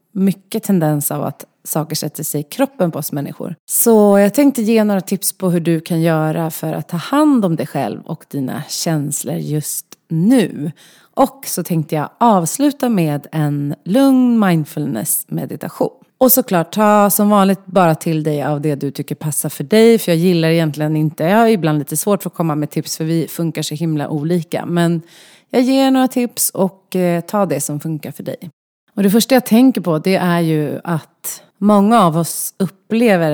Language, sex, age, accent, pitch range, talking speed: Swedish, female, 30-49, native, 155-210 Hz, 195 wpm